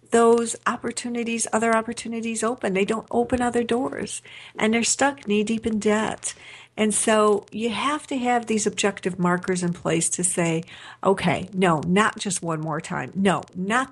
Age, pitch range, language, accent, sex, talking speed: 50-69, 175-230 Hz, English, American, female, 170 wpm